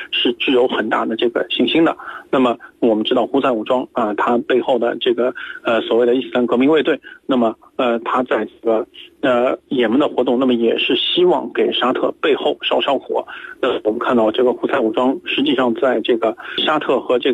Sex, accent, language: male, native, Chinese